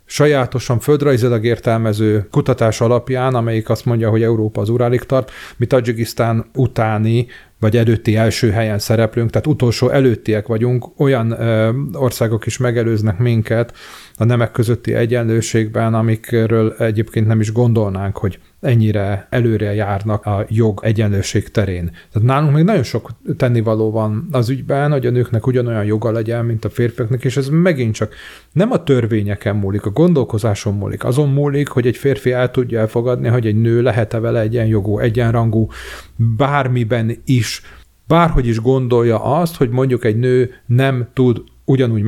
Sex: male